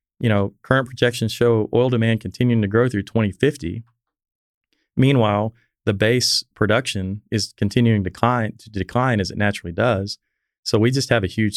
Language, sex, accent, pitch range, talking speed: English, male, American, 100-125 Hz, 165 wpm